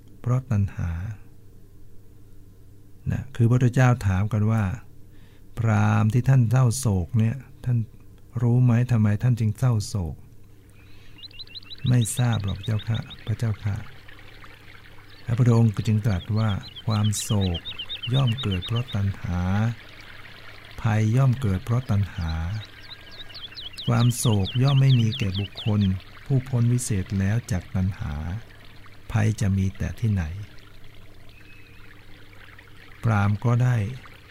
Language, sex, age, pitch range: Thai, male, 60-79, 100-115 Hz